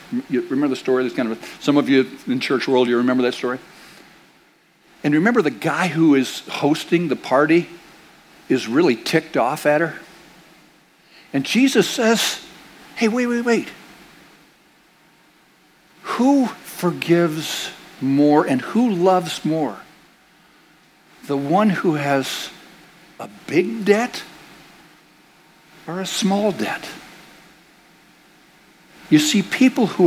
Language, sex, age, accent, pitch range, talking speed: English, male, 60-79, American, 140-195 Hz, 120 wpm